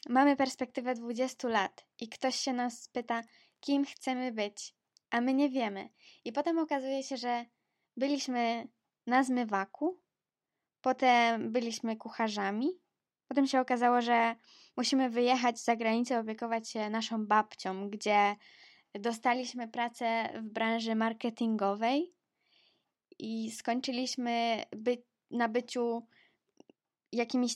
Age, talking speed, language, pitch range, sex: 20-39, 110 wpm, Polish, 225-260 Hz, female